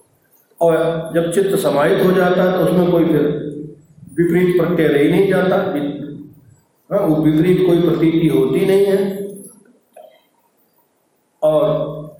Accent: native